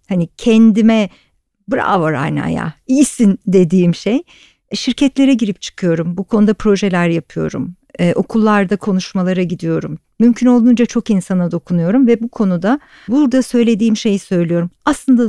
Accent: native